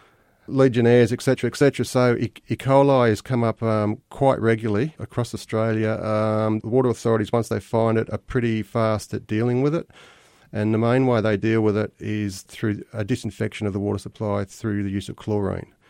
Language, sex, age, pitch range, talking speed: English, male, 40-59, 100-115 Hz, 195 wpm